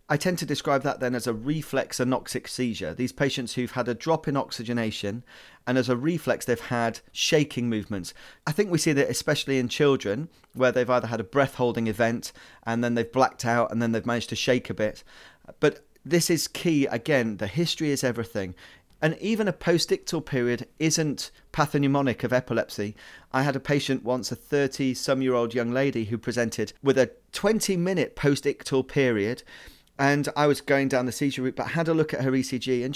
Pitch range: 120-150 Hz